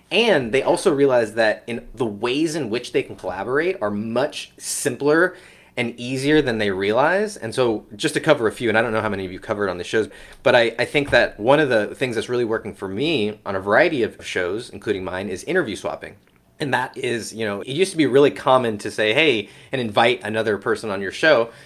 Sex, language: male, English